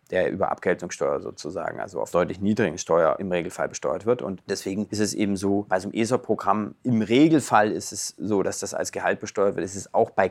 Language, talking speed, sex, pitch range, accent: German, 220 wpm, male, 95-110 Hz, German